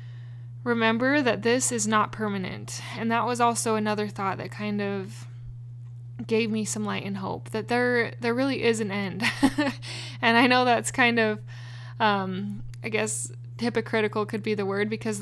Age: 10-29